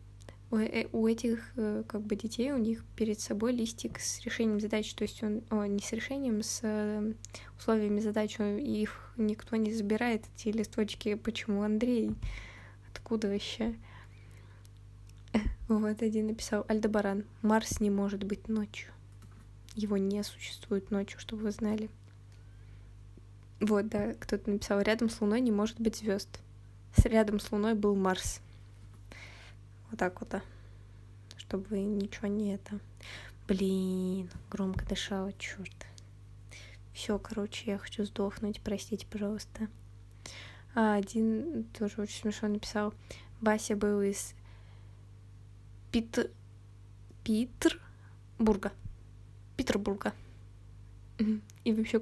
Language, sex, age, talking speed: Russian, female, 20-39, 115 wpm